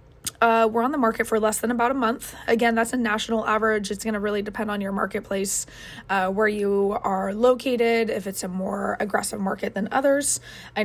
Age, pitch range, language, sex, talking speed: 20-39, 200-230 Hz, English, female, 210 wpm